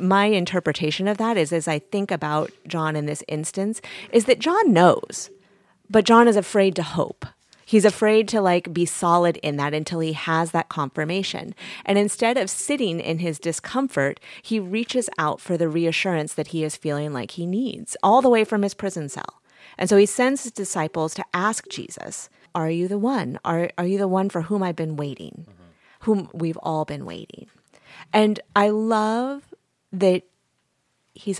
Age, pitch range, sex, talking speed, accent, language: 30-49, 160-215 Hz, female, 185 wpm, American, English